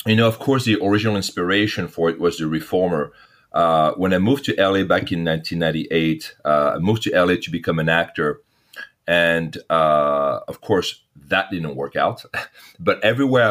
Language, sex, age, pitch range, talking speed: English, male, 40-59, 85-115 Hz, 180 wpm